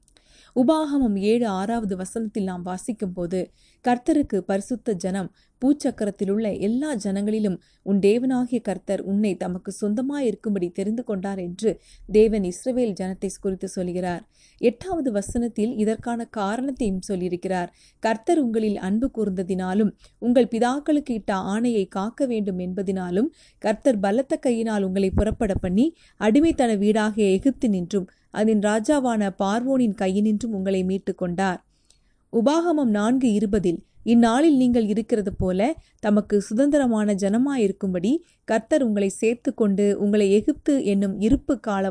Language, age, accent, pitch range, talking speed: Tamil, 30-49, native, 195-245 Hz, 105 wpm